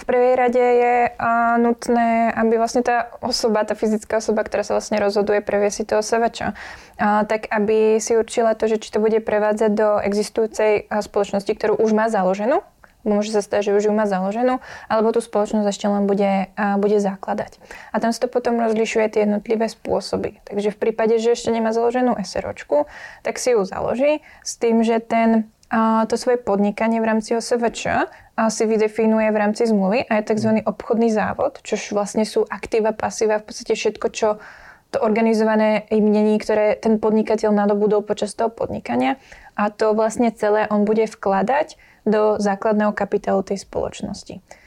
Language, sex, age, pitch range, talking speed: Czech, female, 10-29, 210-230 Hz, 170 wpm